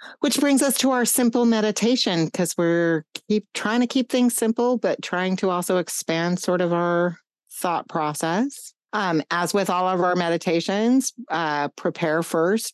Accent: American